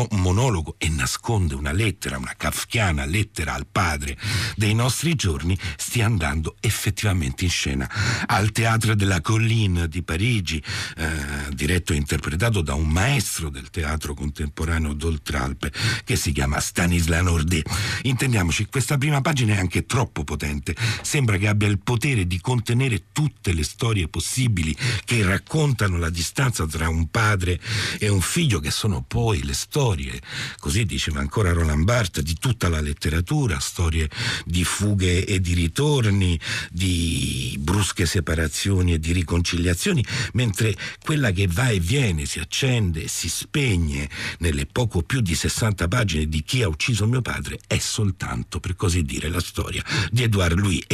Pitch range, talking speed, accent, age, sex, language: 80-110 Hz, 150 wpm, native, 60-79, male, Italian